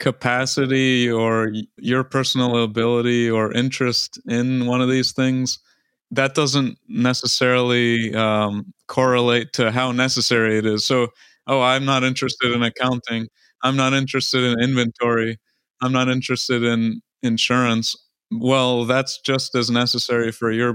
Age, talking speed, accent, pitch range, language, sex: 30-49, 135 wpm, American, 115-130 Hz, English, male